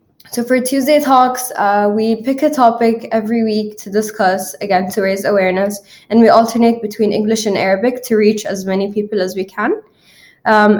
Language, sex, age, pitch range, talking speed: English, female, 10-29, 185-230 Hz, 185 wpm